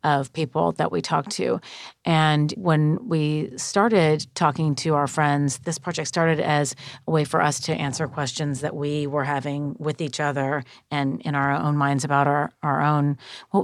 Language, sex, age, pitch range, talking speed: English, female, 40-59, 145-165 Hz, 185 wpm